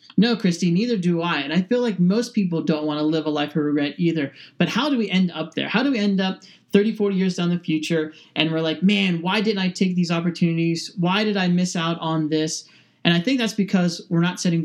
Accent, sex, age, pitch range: American, male, 30-49, 165-195 Hz